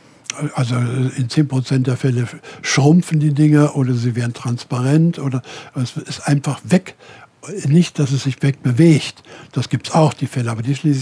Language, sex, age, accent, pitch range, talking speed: German, male, 60-79, German, 135-170 Hz, 175 wpm